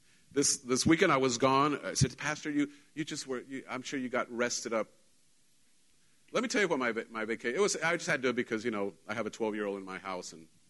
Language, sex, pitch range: English, male, 110-160 Hz